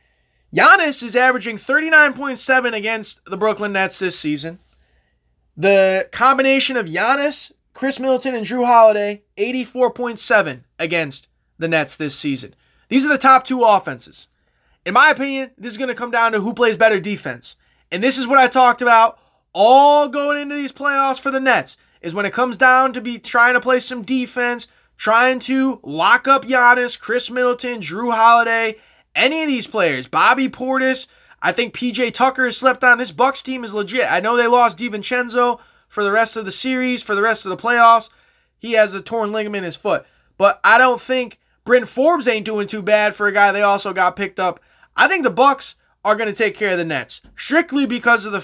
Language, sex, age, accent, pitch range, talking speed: English, male, 20-39, American, 205-260 Hz, 195 wpm